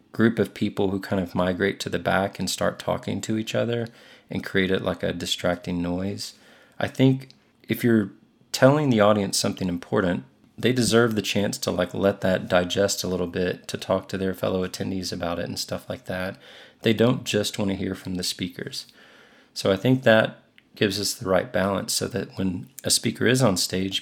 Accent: American